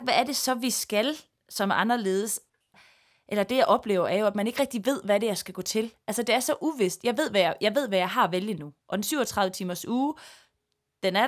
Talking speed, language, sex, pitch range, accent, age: 250 wpm, Danish, female, 190-250 Hz, native, 20-39